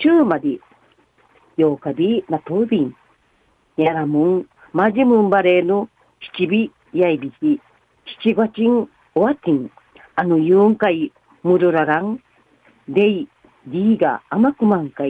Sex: female